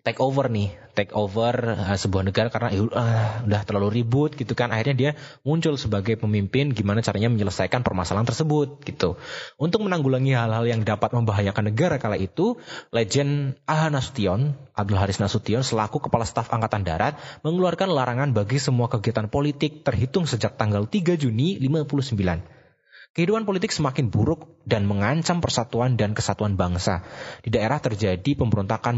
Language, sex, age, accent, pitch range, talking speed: Indonesian, male, 20-39, native, 100-140 Hz, 150 wpm